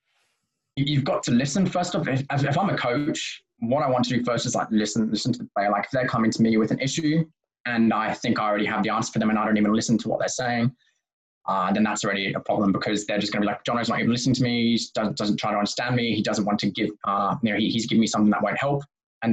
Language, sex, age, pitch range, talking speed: French, male, 20-39, 110-125 Hz, 305 wpm